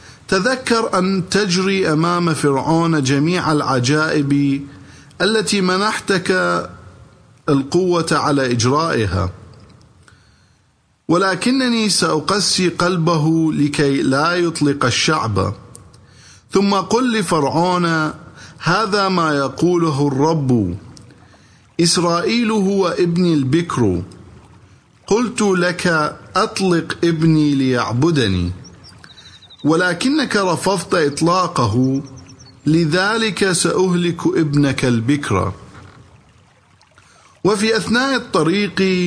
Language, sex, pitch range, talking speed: English, male, 135-185 Hz, 70 wpm